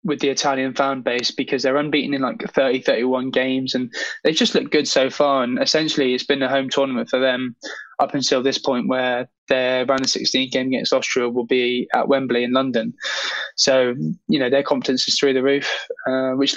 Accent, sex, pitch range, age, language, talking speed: British, male, 130-150 Hz, 10-29, English, 210 wpm